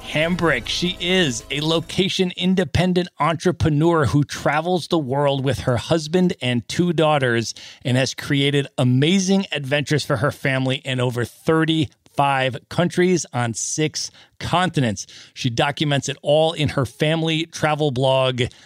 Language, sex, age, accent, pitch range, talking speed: English, male, 40-59, American, 125-165 Hz, 130 wpm